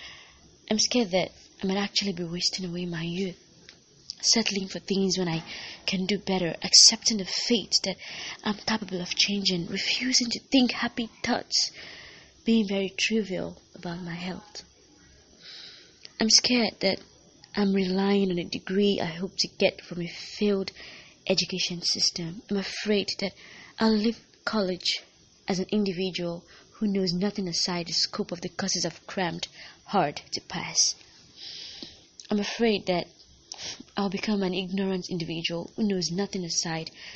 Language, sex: English, female